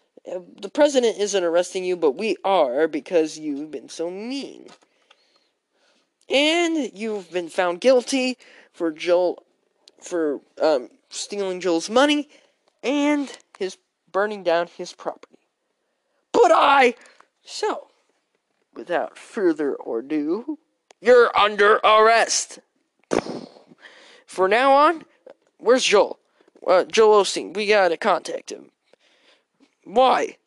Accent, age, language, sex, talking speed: American, 20-39, English, male, 105 wpm